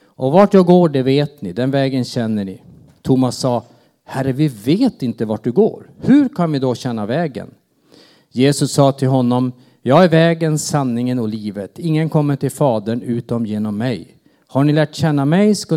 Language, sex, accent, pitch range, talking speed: Swedish, male, Norwegian, 120-160 Hz, 185 wpm